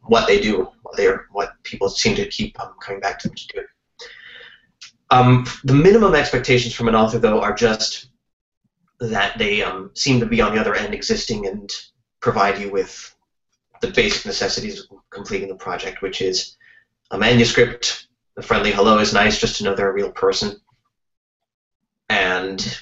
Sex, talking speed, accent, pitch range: male, 175 wpm, American, 100-135 Hz